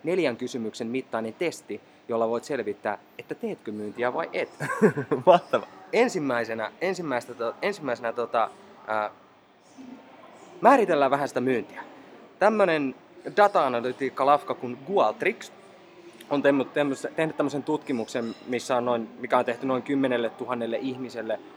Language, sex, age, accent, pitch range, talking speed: English, male, 20-39, Finnish, 120-160 Hz, 110 wpm